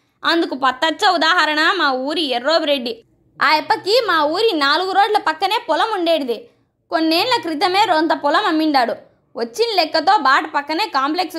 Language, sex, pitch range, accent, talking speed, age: Telugu, female, 295-375 Hz, native, 130 wpm, 20-39